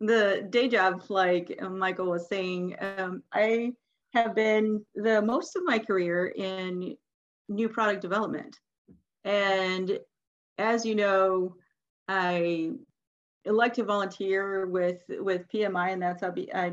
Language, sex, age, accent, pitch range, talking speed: English, female, 40-59, American, 185-225 Hz, 125 wpm